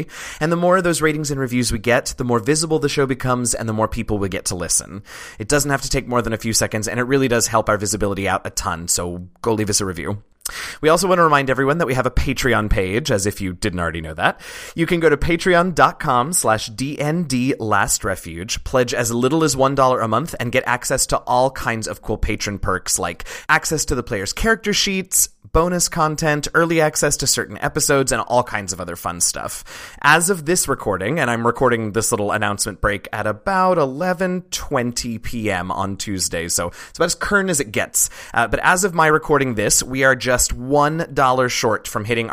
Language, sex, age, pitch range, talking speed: English, male, 30-49, 105-145 Hz, 215 wpm